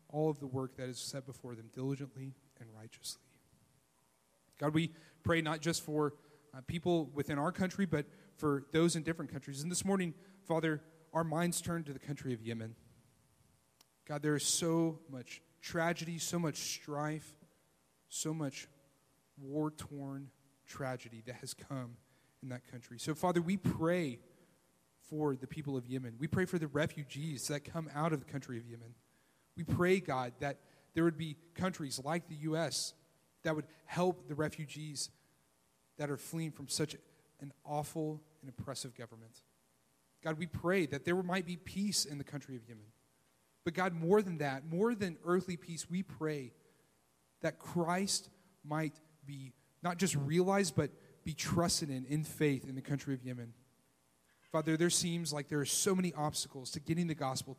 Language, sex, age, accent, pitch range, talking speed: English, male, 30-49, American, 130-165 Hz, 170 wpm